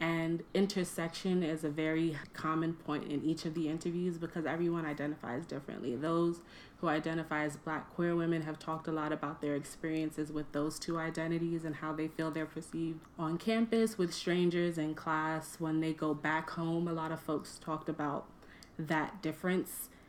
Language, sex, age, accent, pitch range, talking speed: English, female, 30-49, American, 155-175 Hz, 175 wpm